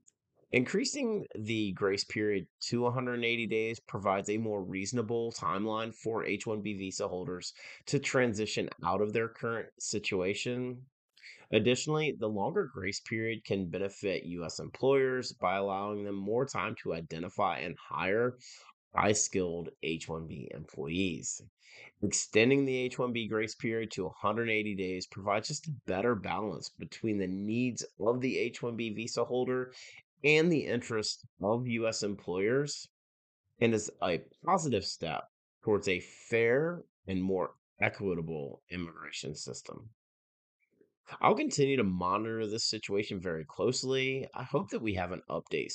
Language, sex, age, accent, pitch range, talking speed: English, male, 30-49, American, 95-125 Hz, 130 wpm